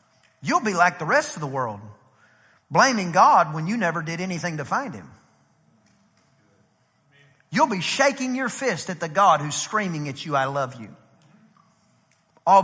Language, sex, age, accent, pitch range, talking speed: English, male, 40-59, American, 150-210 Hz, 160 wpm